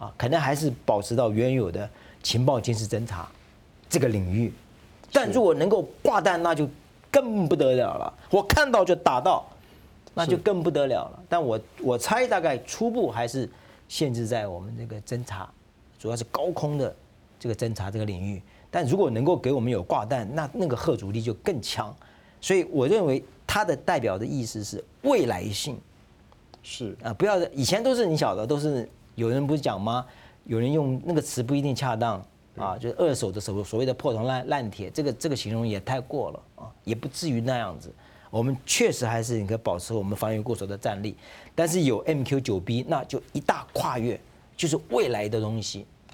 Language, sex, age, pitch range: Chinese, male, 50-69, 110-155 Hz